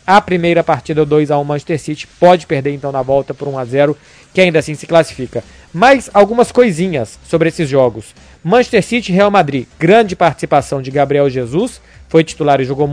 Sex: male